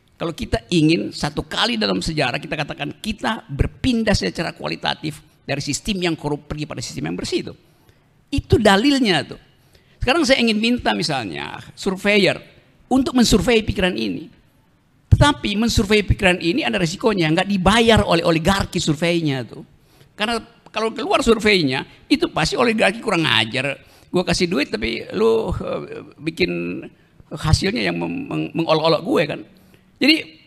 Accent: native